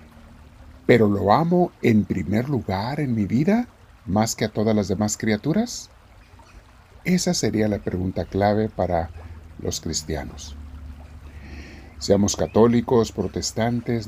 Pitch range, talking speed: 90-115 Hz, 115 wpm